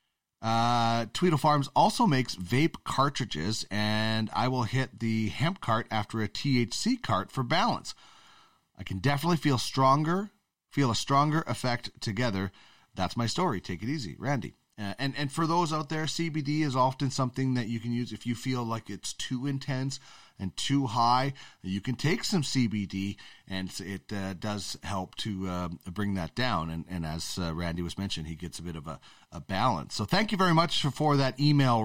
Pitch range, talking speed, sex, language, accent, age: 110-145 Hz, 190 wpm, male, English, American, 40-59